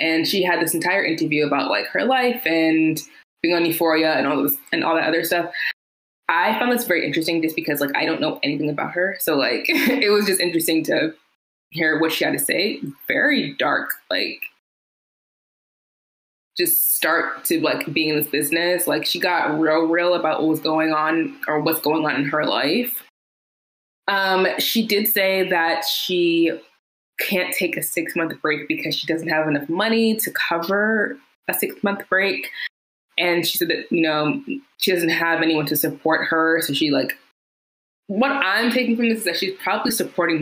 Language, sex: English, female